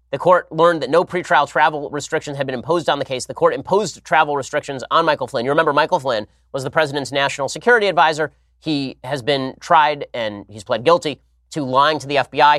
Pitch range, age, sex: 125-155 Hz, 30-49, male